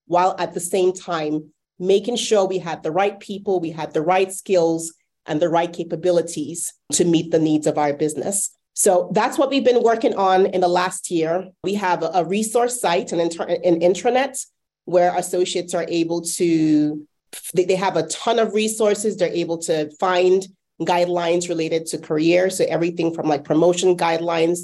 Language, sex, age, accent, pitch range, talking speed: English, female, 30-49, American, 160-190 Hz, 175 wpm